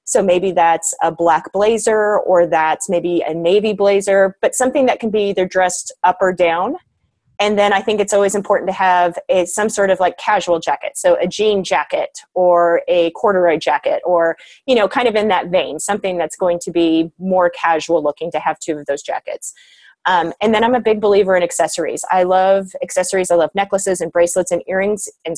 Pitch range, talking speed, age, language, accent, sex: 175-215 Hz, 205 wpm, 30-49, English, American, female